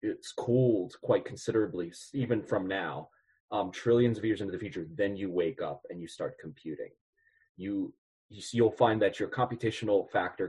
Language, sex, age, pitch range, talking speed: English, male, 30-49, 105-135 Hz, 160 wpm